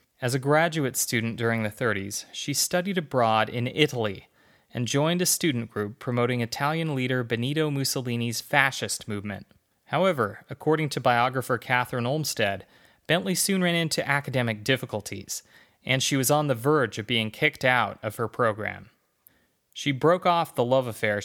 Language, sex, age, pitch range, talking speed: English, male, 30-49, 110-145 Hz, 155 wpm